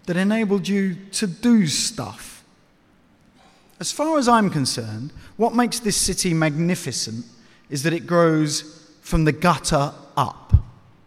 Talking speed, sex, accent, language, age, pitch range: 130 wpm, male, British, English, 40-59, 145-195 Hz